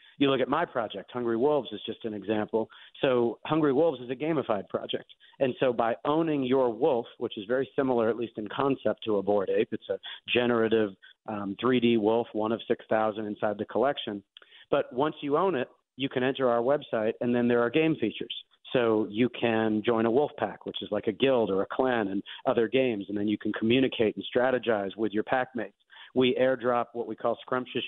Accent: American